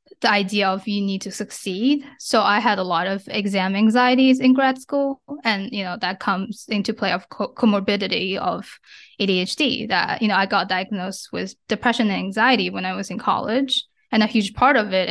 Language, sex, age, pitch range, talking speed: English, female, 10-29, 190-240 Hz, 200 wpm